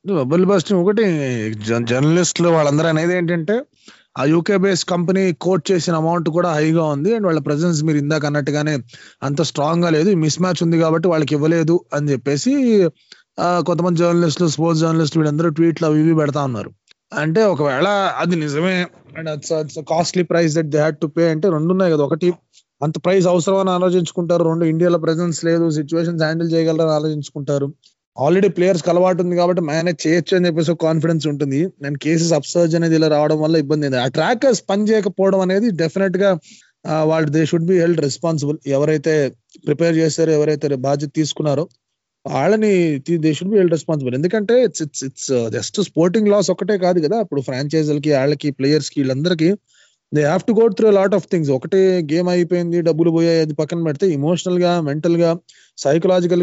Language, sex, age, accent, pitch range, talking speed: Telugu, male, 20-39, native, 155-185 Hz, 165 wpm